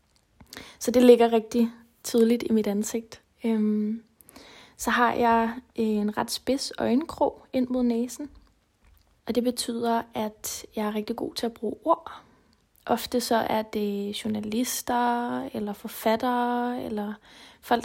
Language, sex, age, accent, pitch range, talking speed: Danish, female, 20-39, native, 225-245 Hz, 130 wpm